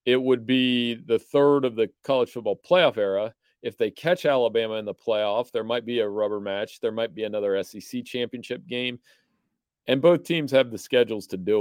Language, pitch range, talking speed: English, 120-175 Hz, 200 wpm